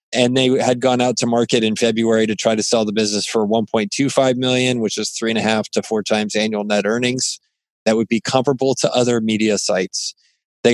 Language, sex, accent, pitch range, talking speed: English, male, American, 110-125 Hz, 220 wpm